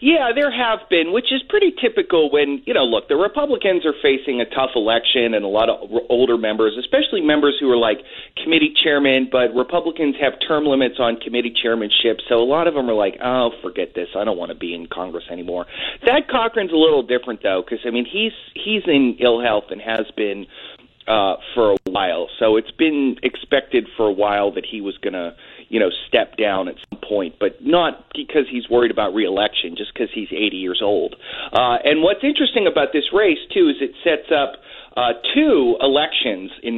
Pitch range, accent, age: 115-175 Hz, American, 30-49